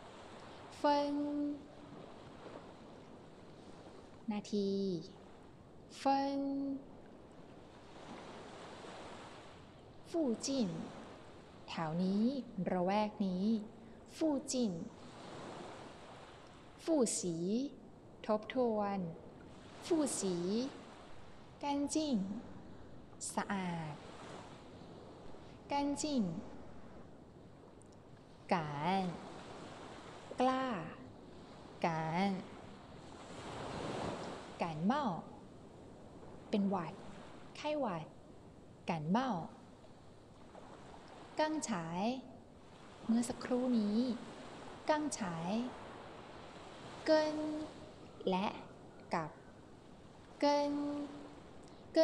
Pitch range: 195-285 Hz